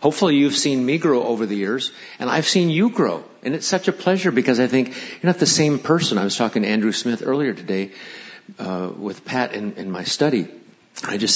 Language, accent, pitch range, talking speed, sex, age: English, American, 105-140 Hz, 225 wpm, male, 50-69